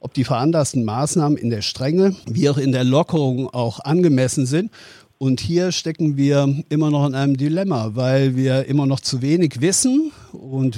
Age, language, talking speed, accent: 50-69, German, 180 wpm, German